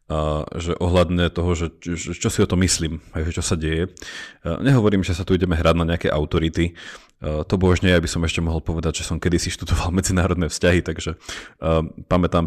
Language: Slovak